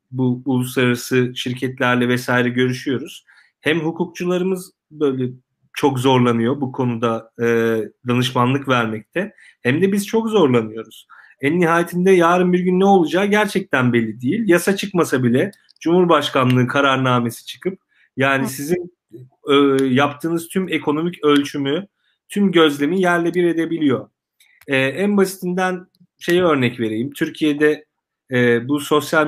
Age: 40-59